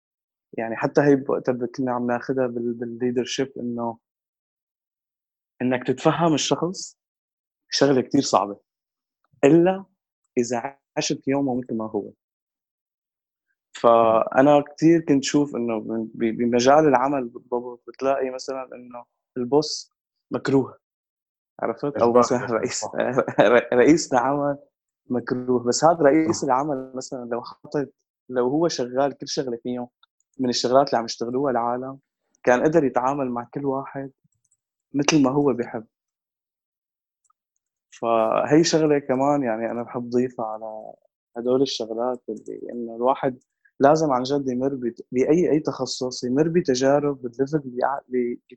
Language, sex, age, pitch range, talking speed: Arabic, male, 20-39, 120-140 Hz, 115 wpm